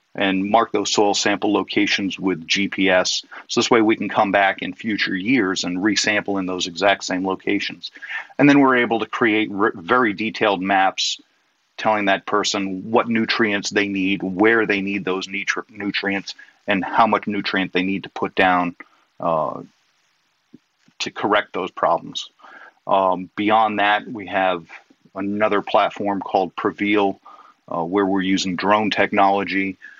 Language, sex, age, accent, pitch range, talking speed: English, male, 40-59, American, 95-110 Hz, 150 wpm